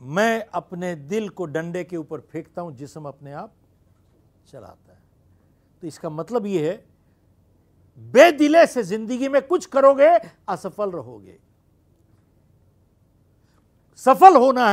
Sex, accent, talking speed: male, native, 120 wpm